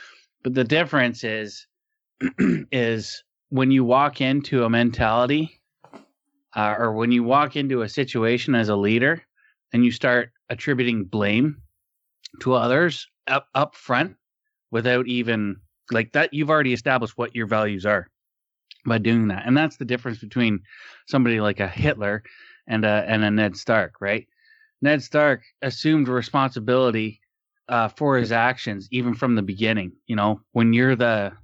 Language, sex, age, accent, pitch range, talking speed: English, male, 30-49, American, 110-130 Hz, 150 wpm